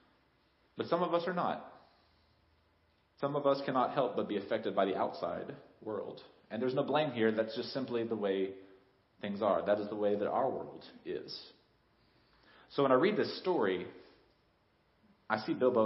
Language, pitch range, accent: English, 100-130 Hz, American